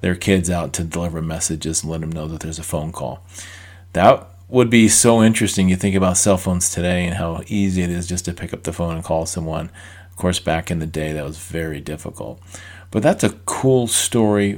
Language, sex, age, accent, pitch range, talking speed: English, male, 40-59, American, 85-100 Hz, 225 wpm